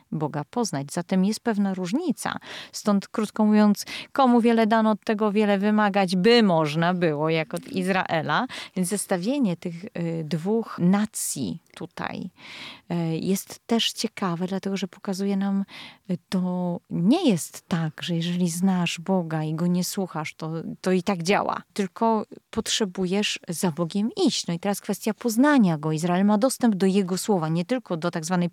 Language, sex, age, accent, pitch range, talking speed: Polish, female, 30-49, native, 170-215 Hz, 155 wpm